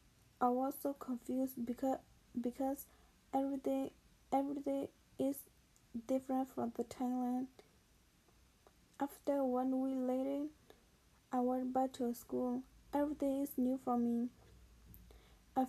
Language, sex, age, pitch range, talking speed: English, female, 20-39, 245-270 Hz, 105 wpm